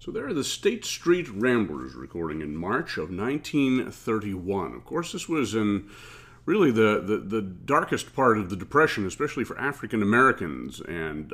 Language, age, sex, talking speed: English, 40-59, male, 165 wpm